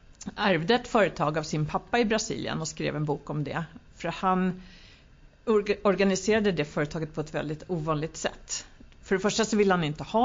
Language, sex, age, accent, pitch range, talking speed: Swedish, female, 50-69, native, 155-200 Hz, 185 wpm